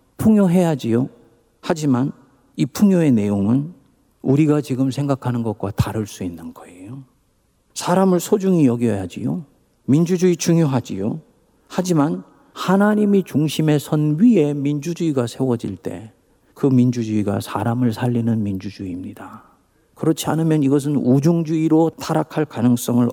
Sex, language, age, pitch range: male, Korean, 50-69, 120-170 Hz